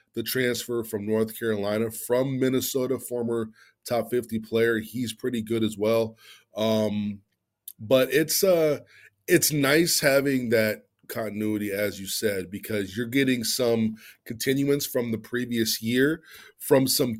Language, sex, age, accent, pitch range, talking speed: English, male, 20-39, American, 110-140 Hz, 135 wpm